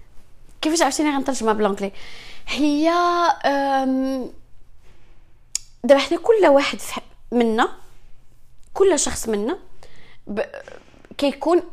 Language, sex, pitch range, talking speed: English, female, 235-315 Hz, 55 wpm